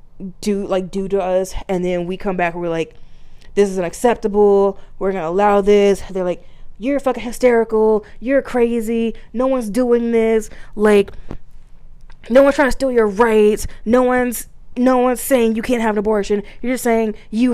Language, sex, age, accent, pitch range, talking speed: English, female, 20-39, American, 190-245 Hz, 180 wpm